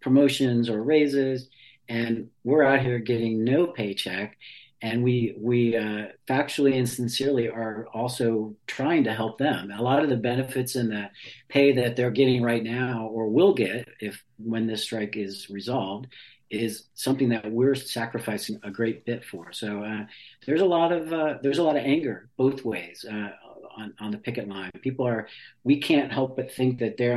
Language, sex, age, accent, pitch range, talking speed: English, male, 50-69, American, 105-130 Hz, 185 wpm